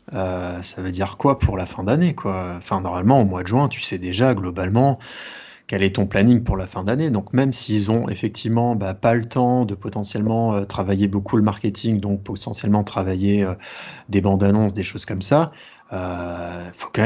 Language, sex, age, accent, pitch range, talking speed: French, male, 30-49, French, 95-120 Hz, 210 wpm